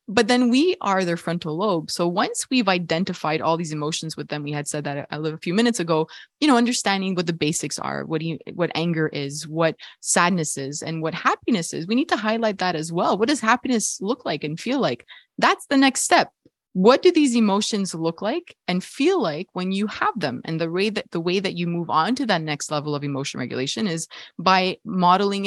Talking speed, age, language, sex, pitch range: 225 wpm, 20-39, English, female, 165-230 Hz